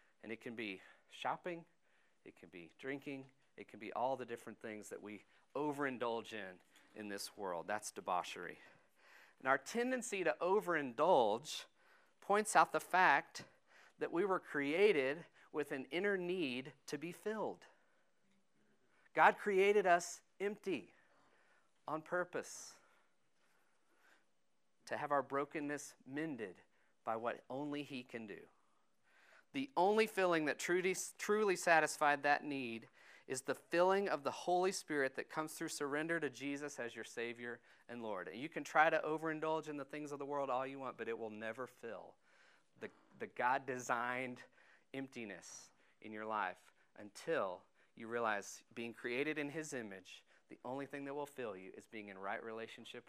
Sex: male